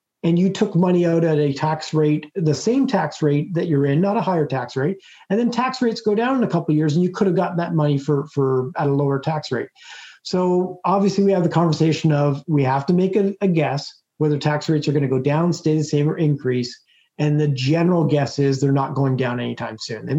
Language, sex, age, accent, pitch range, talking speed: English, male, 40-59, American, 135-170 Hz, 255 wpm